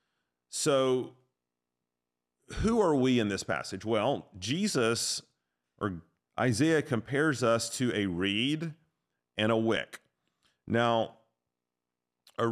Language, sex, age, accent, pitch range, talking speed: English, male, 40-59, American, 90-120 Hz, 100 wpm